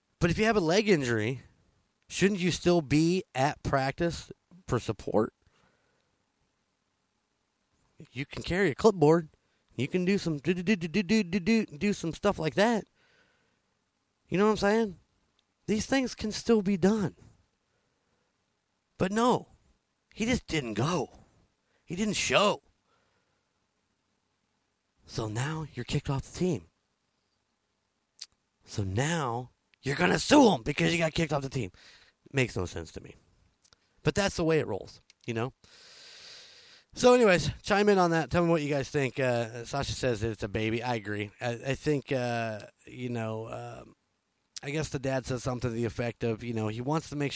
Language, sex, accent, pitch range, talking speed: English, male, American, 120-180 Hz, 160 wpm